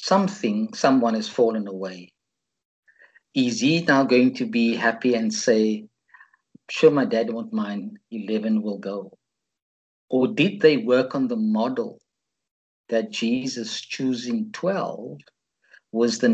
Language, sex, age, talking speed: English, male, 50-69, 130 wpm